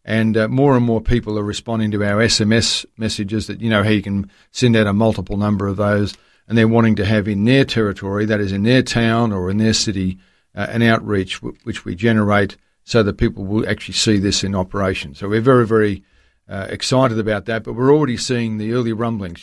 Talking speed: 225 wpm